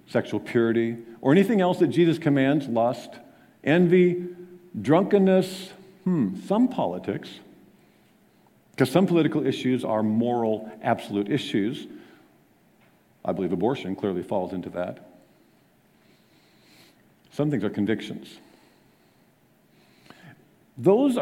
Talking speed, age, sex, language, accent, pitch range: 95 wpm, 50-69, male, English, American, 110-155 Hz